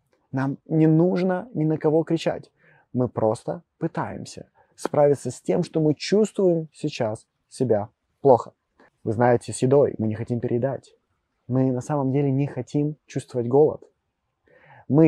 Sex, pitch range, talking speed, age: male, 125-160 Hz, 145 wpm, 20-39